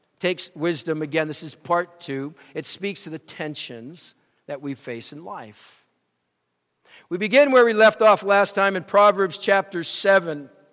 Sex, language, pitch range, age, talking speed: male, English, 170-215 Hz, 50-69, 160 wpm